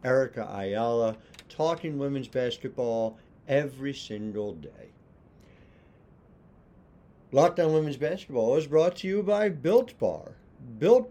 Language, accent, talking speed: English, American, 105 wpm